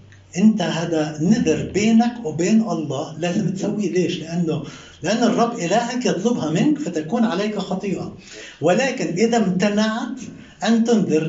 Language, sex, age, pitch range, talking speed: Arabic, male, 60-79, 165-225 Hz, 120 wpm